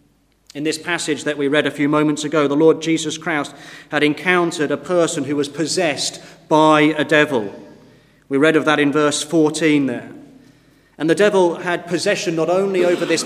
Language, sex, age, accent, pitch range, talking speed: English, male, 40-59, British, 150-170 Hz, 185 wpm